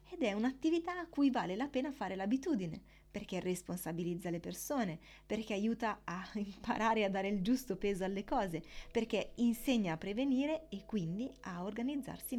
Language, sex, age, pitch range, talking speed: Italian, female, 20-39, 185-270 Hz, 160 wpm